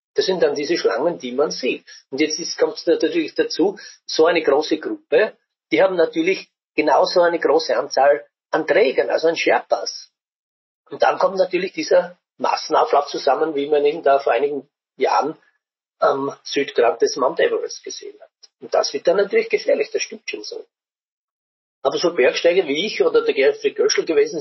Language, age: German, 40-59